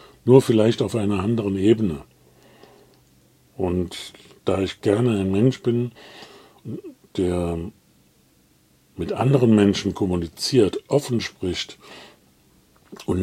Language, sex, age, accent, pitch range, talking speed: German, male, 50-69, German, 95-130 Hz, 95 wpm